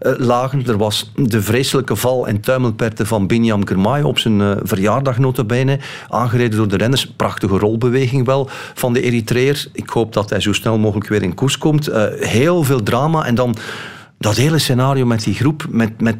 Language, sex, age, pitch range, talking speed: Dutch, male, 40-59, 115-145 Hz, 175 wpm